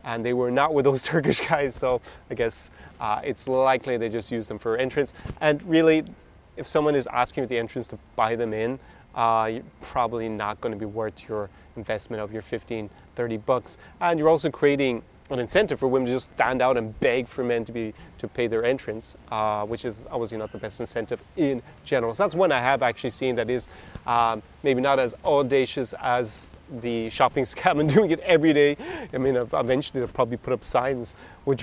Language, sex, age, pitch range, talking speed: English, male, 30-49, 115-135 Hz, 210 wpm